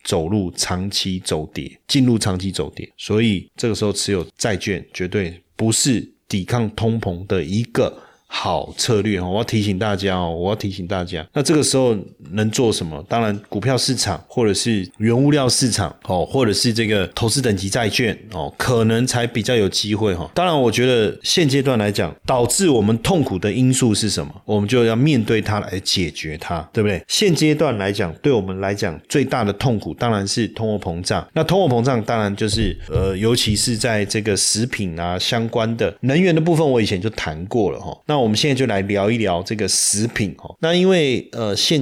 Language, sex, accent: Chinese, male, native